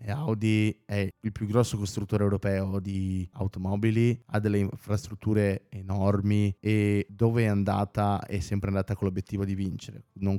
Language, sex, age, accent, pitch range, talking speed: Italian, male, 20-39, native, 100-115 Hz, 145 wpm